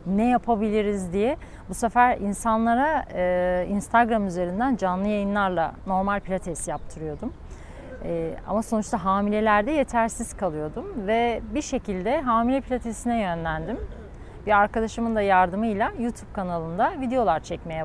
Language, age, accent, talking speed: Turkish, 40-59, native, 115 wpm